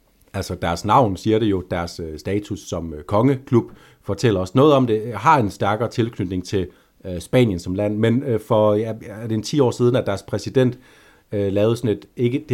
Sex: male